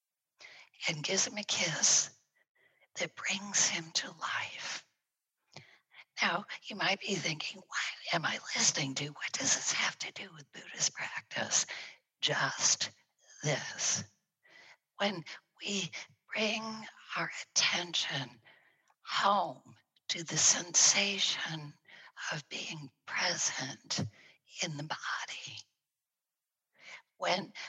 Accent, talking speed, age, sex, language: American, 100 wpm, 50-69, female, English